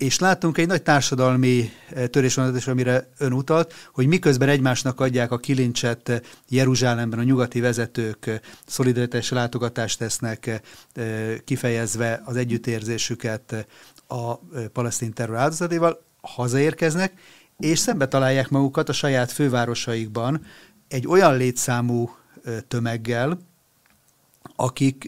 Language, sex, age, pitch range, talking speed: Hungarian, male, 30-49, 120-145 Hz, 100 wpm